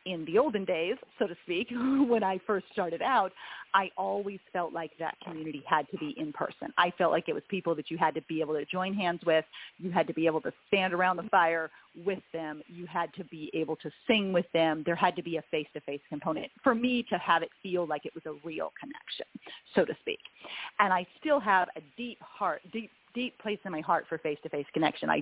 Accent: American